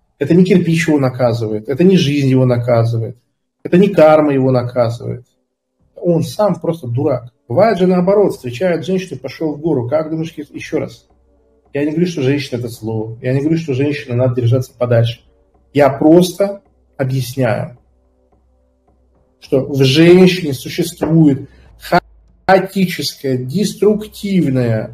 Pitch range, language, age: 120-175 Hz, Russian, 40-59